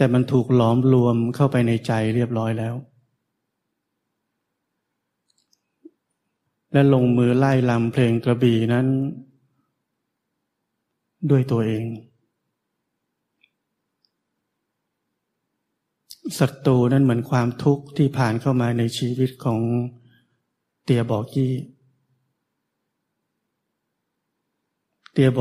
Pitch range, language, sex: 120-135 Hz, Thai, male